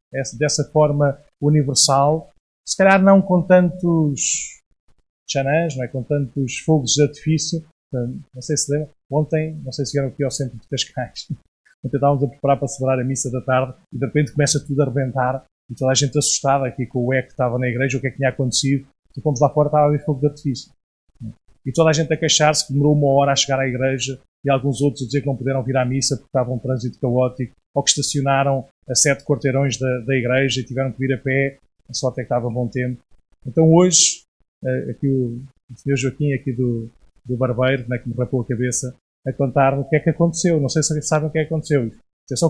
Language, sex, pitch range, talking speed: Portuguese, male, 130-150 Hz, 230 wpm